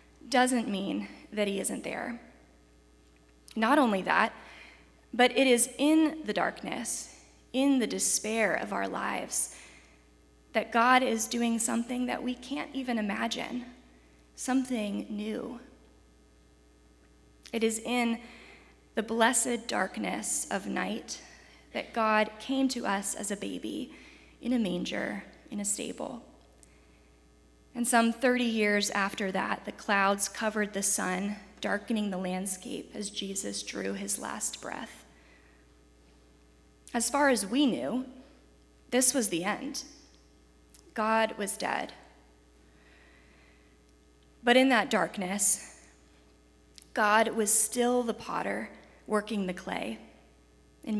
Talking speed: 120 wpm